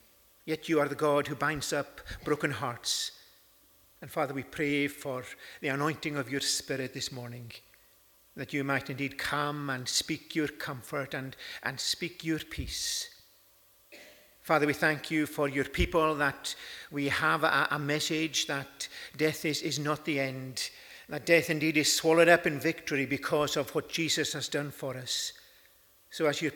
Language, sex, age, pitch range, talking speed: English, male, 50-69, 135-155 Hz, 170 wpm